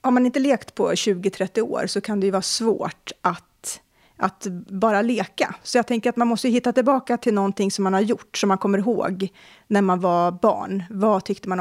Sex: female